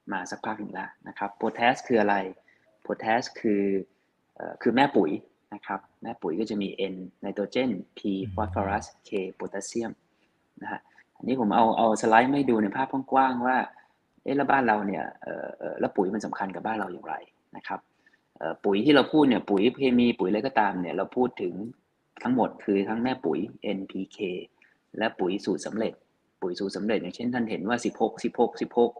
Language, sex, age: Thai, male, 20-39